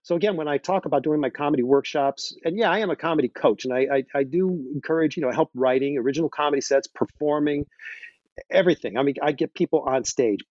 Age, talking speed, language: 50-69, 220 wpm, English